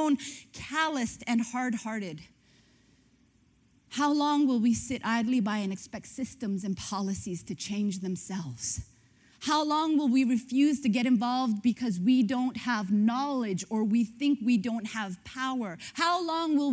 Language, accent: English, American